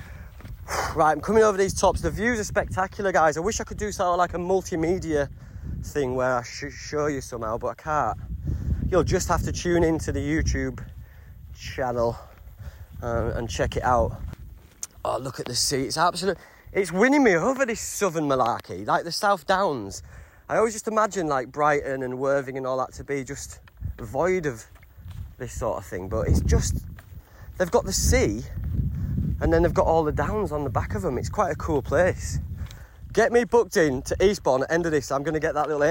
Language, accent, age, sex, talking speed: English, British, 30-49, male, 205 wpm